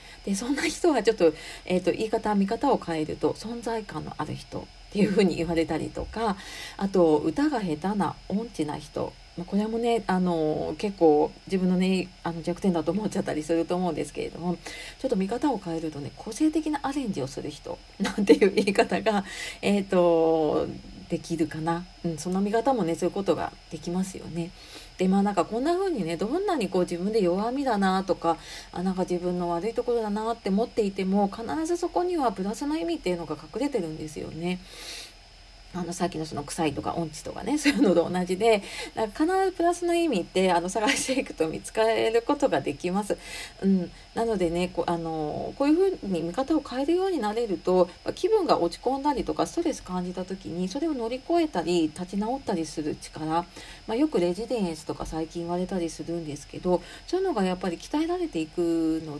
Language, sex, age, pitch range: Japanese, female, 40-59, 170-235 Hz